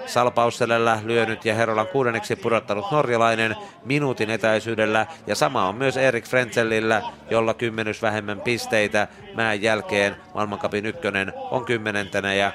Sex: male